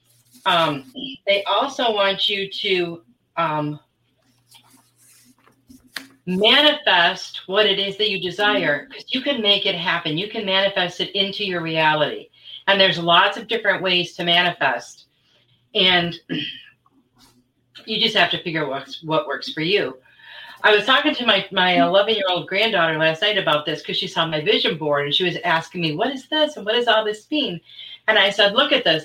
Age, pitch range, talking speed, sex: 40-59, 160-215 Hz, 175 wpm, female